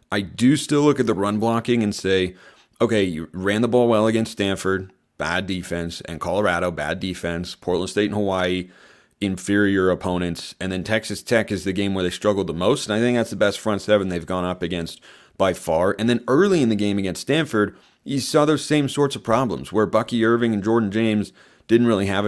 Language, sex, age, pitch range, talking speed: English, male, 30-49, 90-110 Hz, 215 wpm